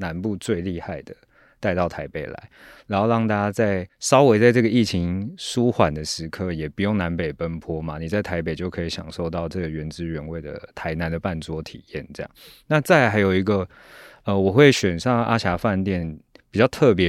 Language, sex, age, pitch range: Chinese, male, 20-39, 85-105 Hz